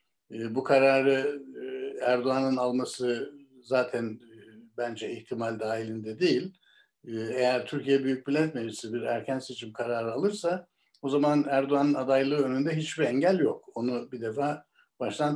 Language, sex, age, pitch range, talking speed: Turkish, male, 60-79, 120-145 Hz, 120 wpm